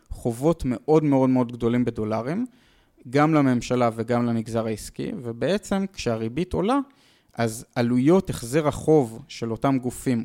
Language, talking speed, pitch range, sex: Hebrew, 125 wpm, 115-155 Hz, male